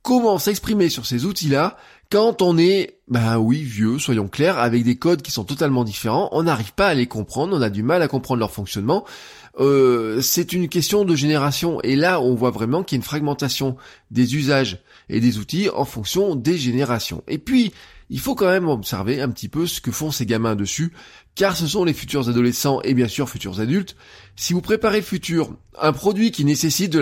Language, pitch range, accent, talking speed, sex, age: French, 120-175 Hz, French, 210 wpm, male, 20-39